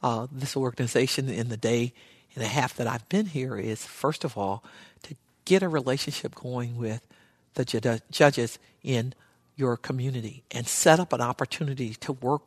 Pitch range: 120-150 Hz